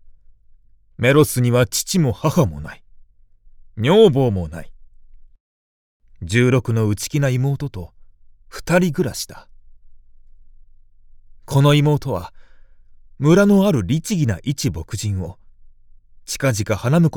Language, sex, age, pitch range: Japanese, male, 30-49, 100-130 Hz